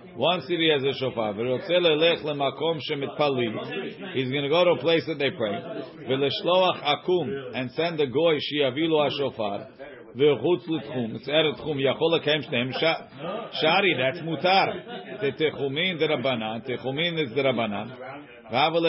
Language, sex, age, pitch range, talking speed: English, male, 50-69, 135-165 Hz, 95 wpm